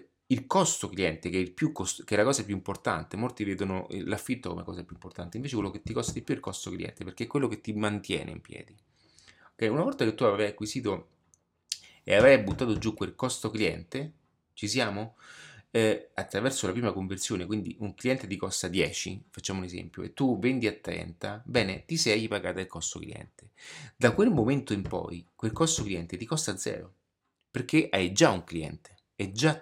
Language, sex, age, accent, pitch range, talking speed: Italian, male, 30-49, native, 95-115 Hz, 200 wpm